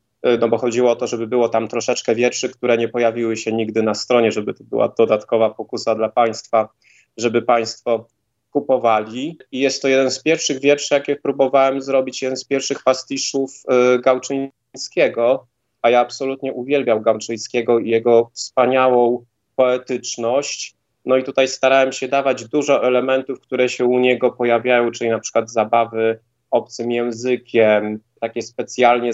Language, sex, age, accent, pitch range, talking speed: Polish, male, 20-39, native, 115-130 Hz, 150 wpm